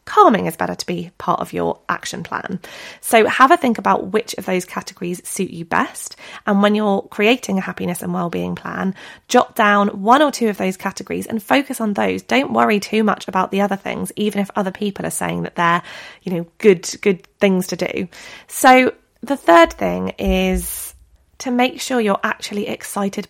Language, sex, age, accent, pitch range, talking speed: English, female, 20-39, British, 190-235 Hz, 200 wpm